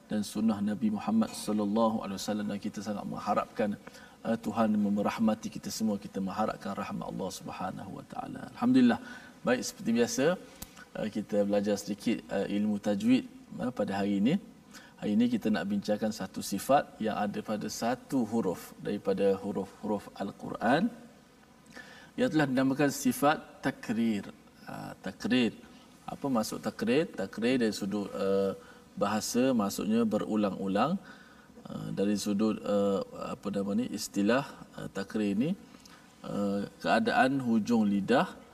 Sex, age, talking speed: male, 50-69, 125 wpm